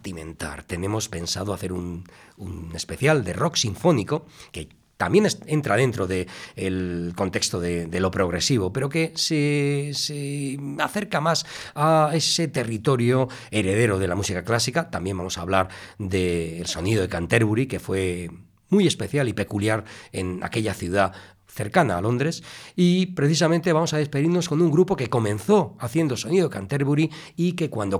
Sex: male